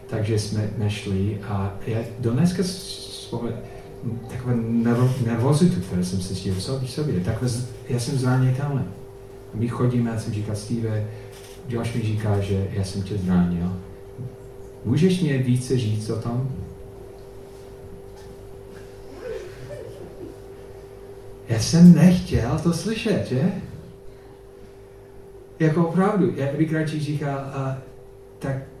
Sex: male